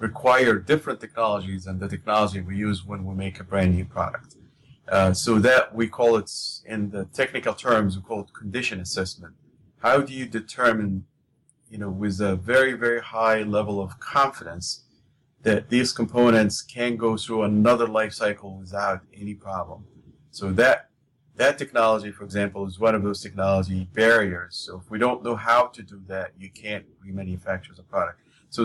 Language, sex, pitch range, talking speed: English, male, 100-115 Hz, 175 wpm